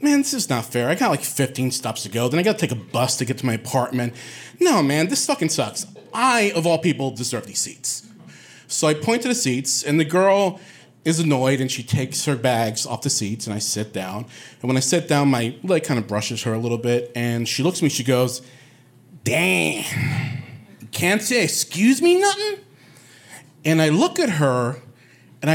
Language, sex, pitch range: English, male, 125-170 Hz